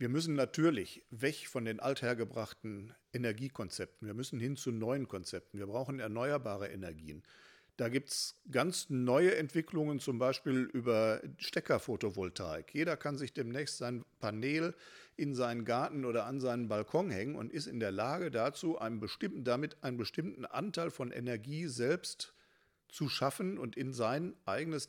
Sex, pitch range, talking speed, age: male, 115-145 Hz, 150 wpm, 40-59